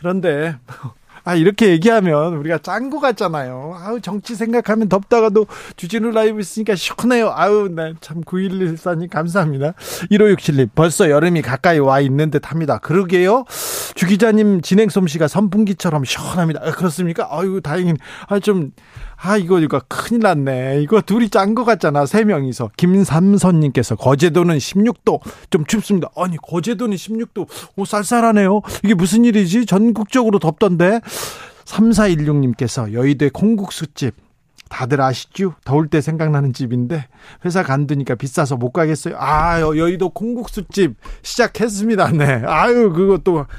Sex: male